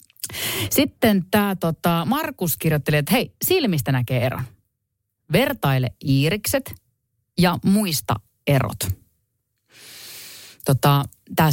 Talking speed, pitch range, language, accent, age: 90 wpm, 130-180 Hz, Finnish, native, 30-49